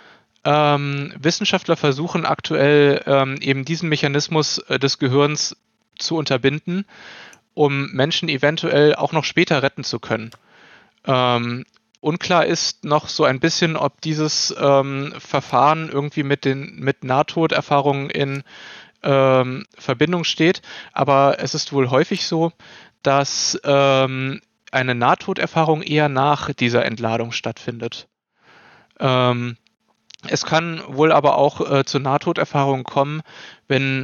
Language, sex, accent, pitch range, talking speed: German, male, German, 135-160 Hz, 120 wpm